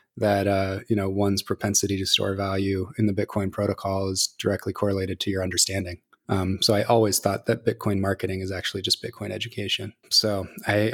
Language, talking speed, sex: English, 185 wpm, male